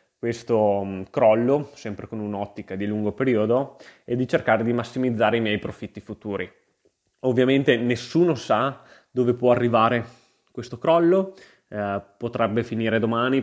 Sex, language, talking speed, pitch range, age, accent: male, Italian, 130 wpm, 105-125 Hz, 20-39, native